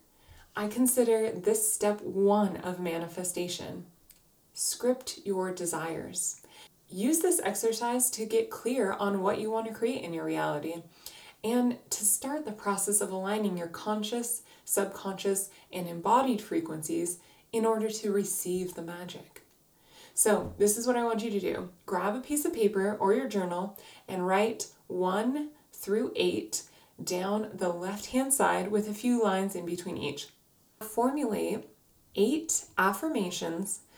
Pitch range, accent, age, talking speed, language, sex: 180-225 Hz, American, 20-39, 140 wpm, English, female